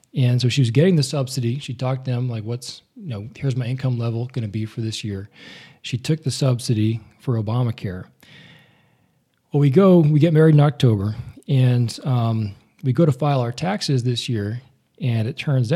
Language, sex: English, male